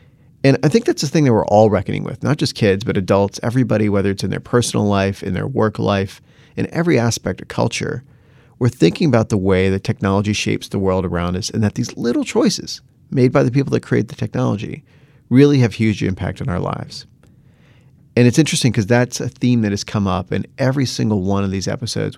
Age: 40-59